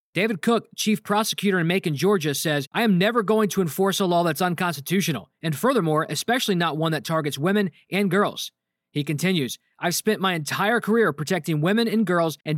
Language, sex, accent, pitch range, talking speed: English, male, American, 165-215 Hz, 190 wpm